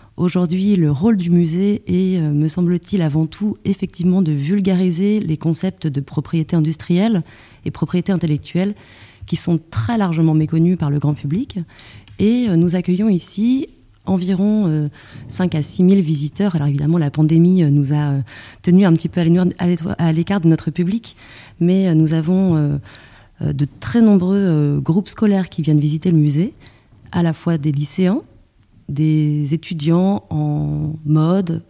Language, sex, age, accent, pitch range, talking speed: French, female, 30-49, French, 150-185 Hz, 145 wpm